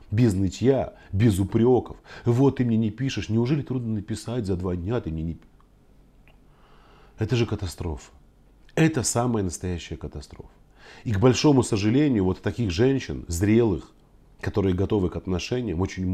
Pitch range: 95-120 Hz